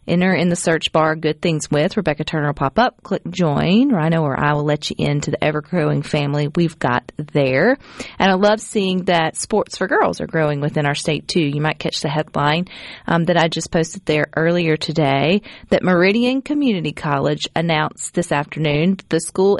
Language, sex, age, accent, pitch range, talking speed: English, female, 40-59, American, 150-185 Hz, 200 wpm